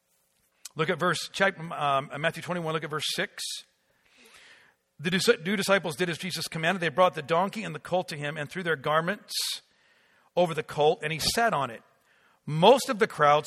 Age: 50-69